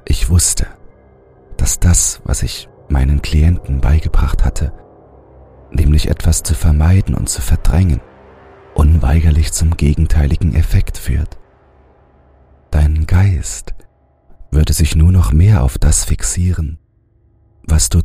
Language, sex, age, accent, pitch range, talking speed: German, male, 40-59, German, 65-90 Hz, 115 wpm